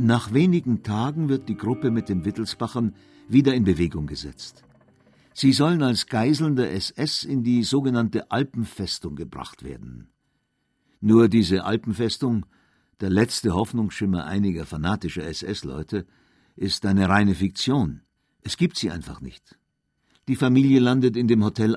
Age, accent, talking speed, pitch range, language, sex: 60-79, German, 135 wpm, 95-125 Hz, German, male